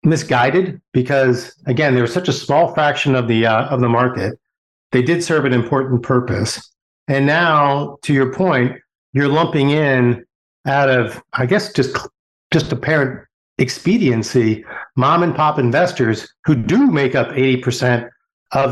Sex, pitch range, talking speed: male, 120-140 Hz, 145 wpm